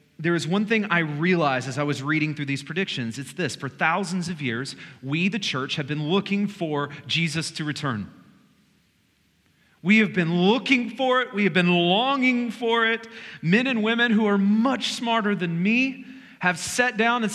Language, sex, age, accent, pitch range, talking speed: English, male, 40-59, American, 145-205 Hz, 185 wpm